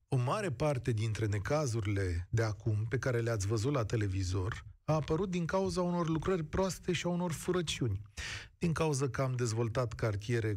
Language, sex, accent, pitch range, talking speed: Romanian, male, native, 105-155 Hz, 170 wpm